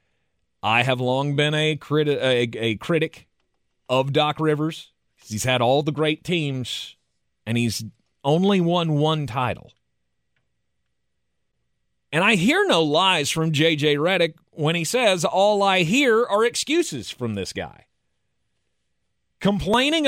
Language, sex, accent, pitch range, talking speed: English, male, American, 115-180 Hz, 125 wpm